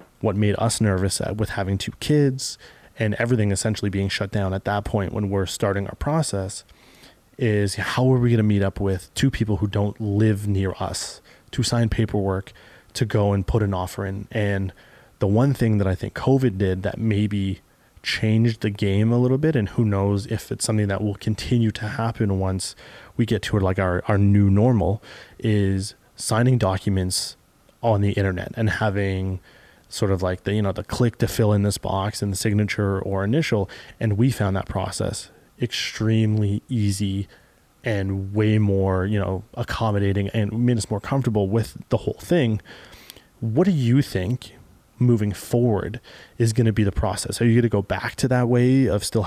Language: English